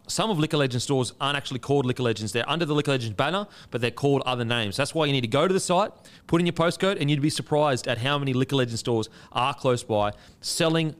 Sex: male